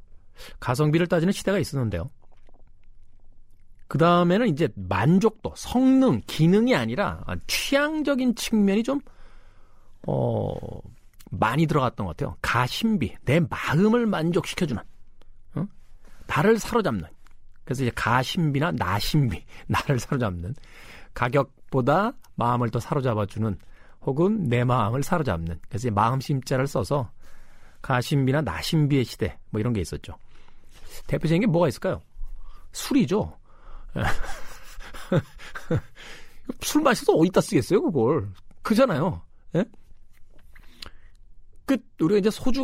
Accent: native